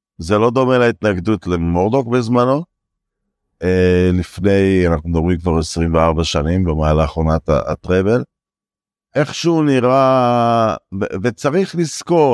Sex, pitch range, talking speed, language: male, 100-155 Hz, 100 wpm, Hebrew